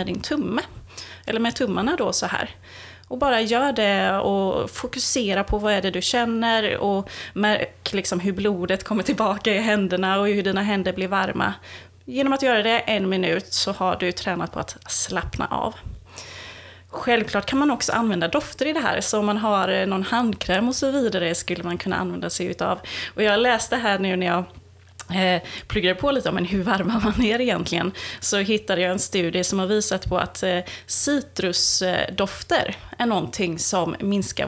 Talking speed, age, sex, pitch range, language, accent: 180 wpm, 30-49, female, 185-230 Hz, Swedish, native